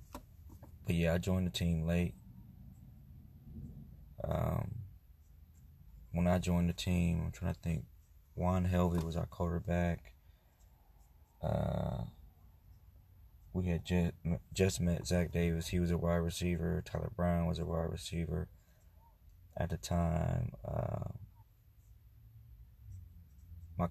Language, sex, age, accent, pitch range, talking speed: English, male, 20-39, American, 75-90 Hz, 115 wpm